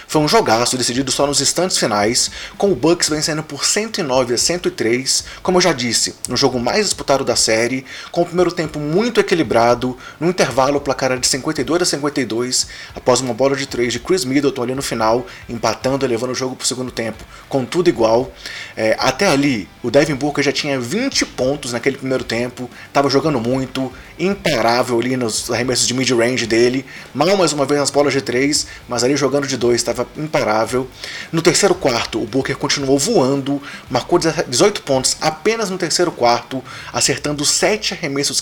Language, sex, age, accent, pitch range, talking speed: Portuguese, male, 20-39, Brazilian, 125-160 Hz, 185 wpm